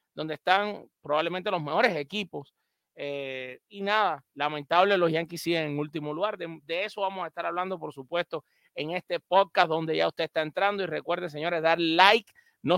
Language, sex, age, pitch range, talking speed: English, male, 30-49, 155-195 Hz, 185 wpm